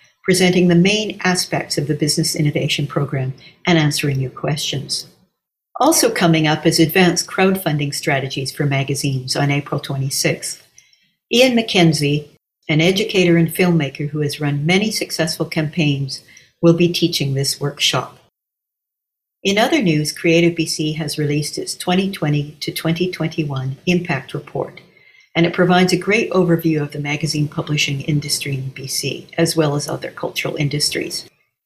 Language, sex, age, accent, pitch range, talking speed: English, female, 50-69, American, 145-175 Hz, 140 wpm